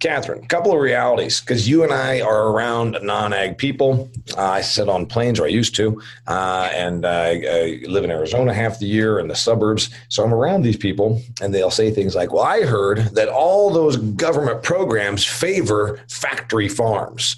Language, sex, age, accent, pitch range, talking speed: English, male, 40-59, American, 100-125 Hz, 195 wpm